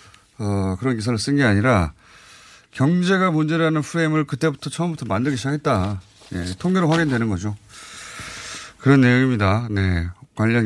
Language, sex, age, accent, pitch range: Korean, male, 30-49, native, 100-145 Hz